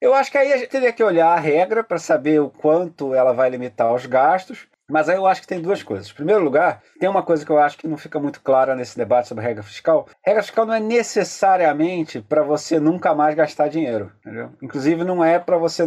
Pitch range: 150-205 Hz